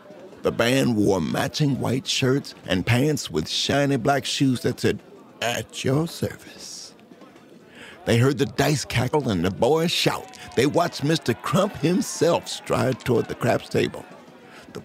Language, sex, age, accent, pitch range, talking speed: English, male, 60-79, American, 110-140 Hz, 150 wpm